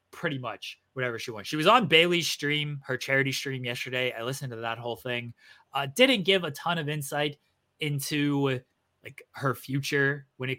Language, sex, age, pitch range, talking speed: English, male, 20-39, 120-150 Hz, 185 wpm